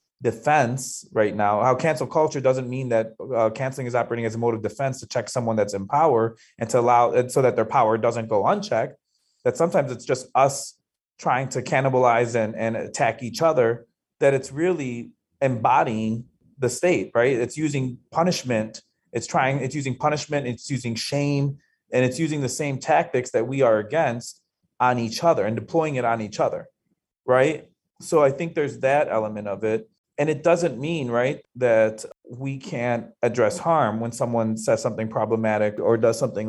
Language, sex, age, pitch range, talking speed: English, male, 30-49, 115-140 Hz, 185 wpm